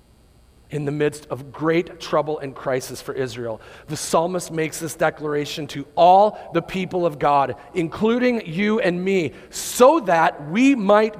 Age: 40-59